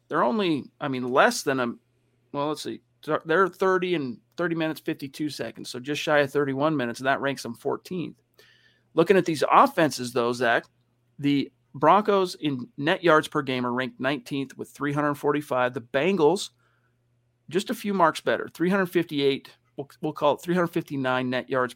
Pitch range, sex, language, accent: 125-155 Hz, male, English, American